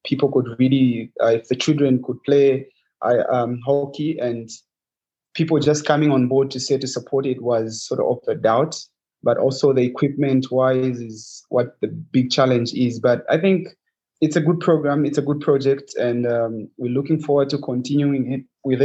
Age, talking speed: 30-49, 185 wpm